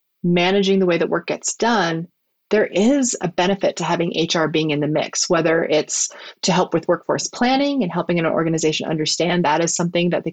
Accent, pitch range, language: American, 165-210 Hz, English